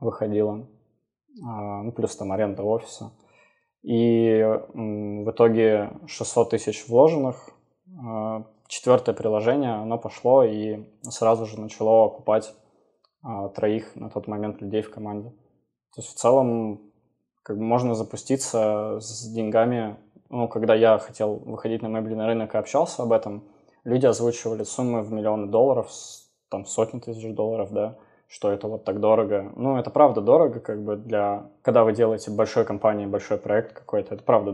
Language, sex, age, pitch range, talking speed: Russian, male, 20-39, 105-115 Hz, 145 wpm